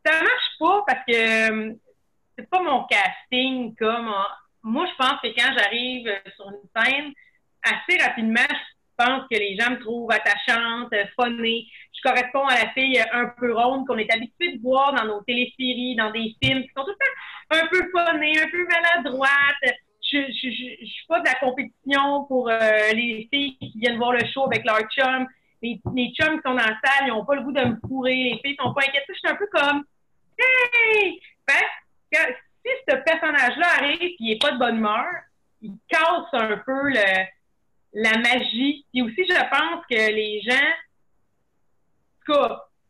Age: 30-49